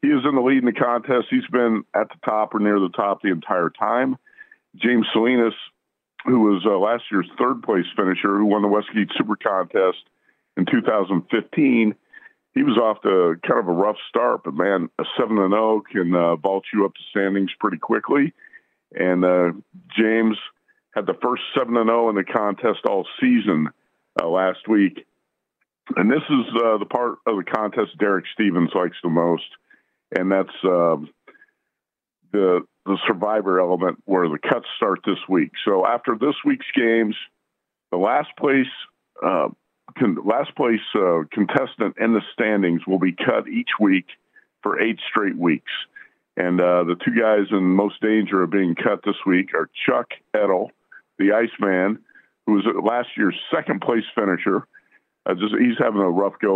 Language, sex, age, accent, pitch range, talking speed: English, male, 50-69, American, 90-130 Hz, 170 wpm